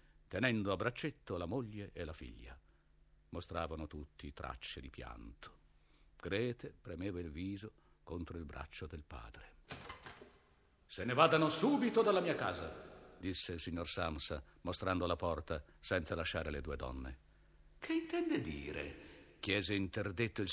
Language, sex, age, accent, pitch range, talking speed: Italian, male, 50-69, native, 80-110 Hz, 135 wpm